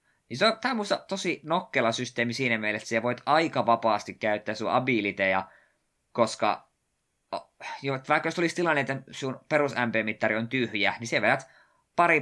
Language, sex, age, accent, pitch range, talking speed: Finnish, male, 20-39, native, 100-130 Hz, 145 wpm